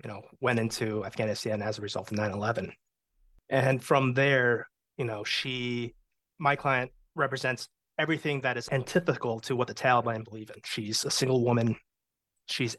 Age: 30-49